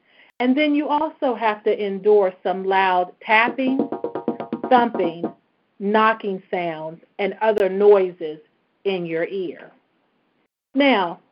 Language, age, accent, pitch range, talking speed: English, 40-59, American, 185-255 Hz, 105 wpm